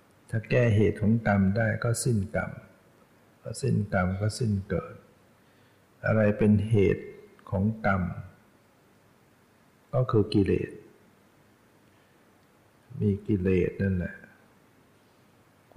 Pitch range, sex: 95-110 Hz, male